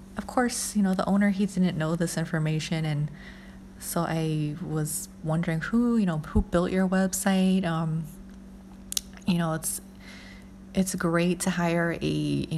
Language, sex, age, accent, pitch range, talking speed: English, female, 20-39, American, 155-195 Hz, 155 wpm